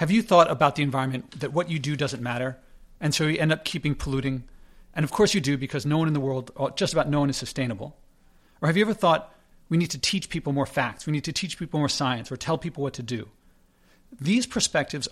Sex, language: male, English